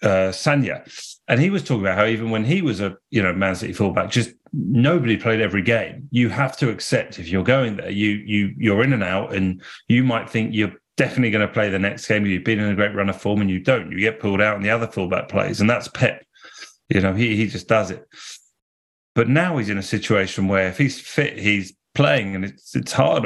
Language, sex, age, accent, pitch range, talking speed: English, male, 30-49, British, 100-125 Hz, 250 wpm